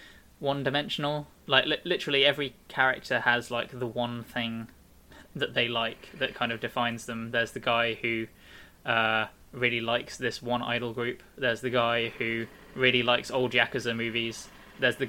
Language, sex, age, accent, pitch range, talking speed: English, male, 10-29, British, 115-135 Hz, 165 wpm